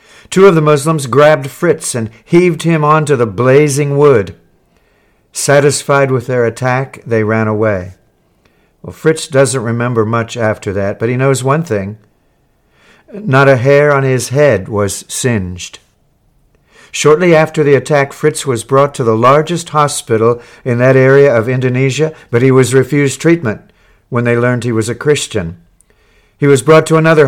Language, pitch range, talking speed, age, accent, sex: English, 115-145 Hz, 160 wpm, 60-79, American, male